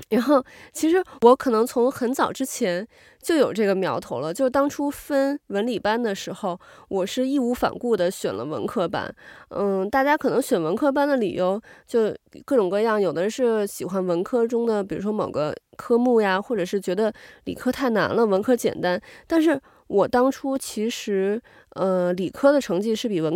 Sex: female